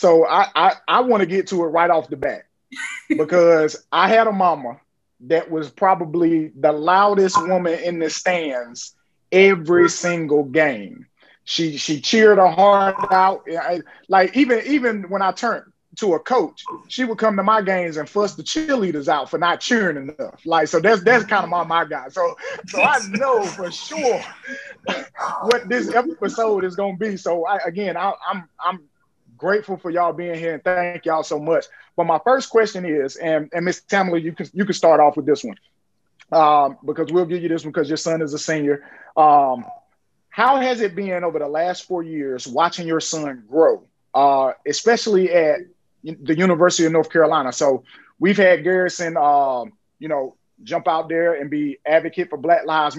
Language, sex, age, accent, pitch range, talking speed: English, male, 20-39, American, 160-200 Hz, 185 wpm